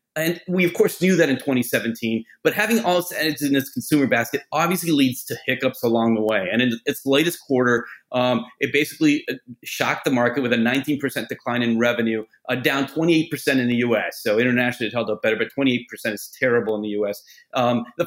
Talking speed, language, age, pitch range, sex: 215 wpm, English, 30-49, 125-150 Hz, male